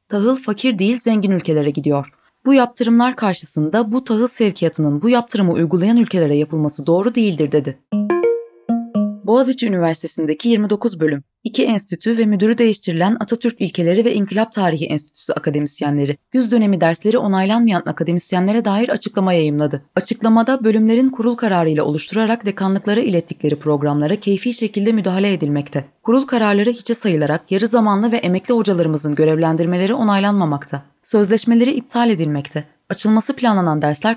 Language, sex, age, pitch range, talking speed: Turkish, female, 20-39, 155-230 Hz, 130 wpm